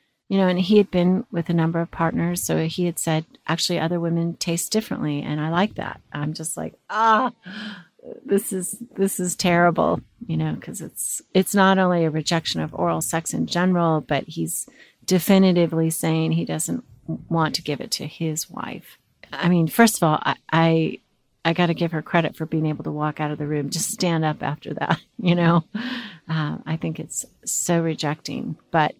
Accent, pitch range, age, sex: American, 160-190 Hz, 40-59, female